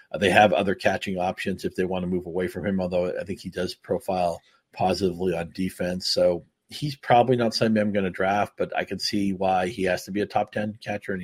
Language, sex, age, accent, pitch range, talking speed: English, male, 40-59, American, 90-105 Hz, 240 wpm